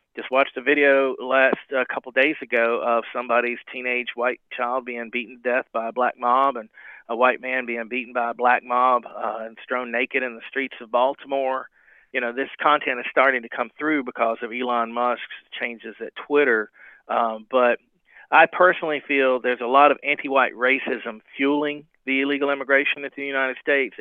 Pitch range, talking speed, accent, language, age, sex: 120-135 Hz, 190 wpm, American, English, 40-59, male